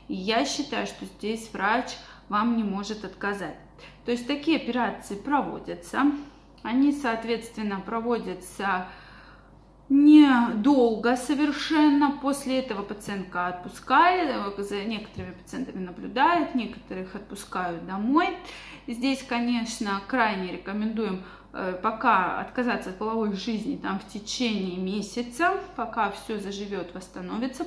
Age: 20-39